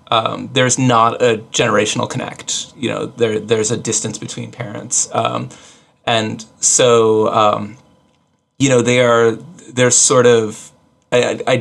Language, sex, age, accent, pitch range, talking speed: English, male, 30-49, American, 110-130 Hz, 140 wpm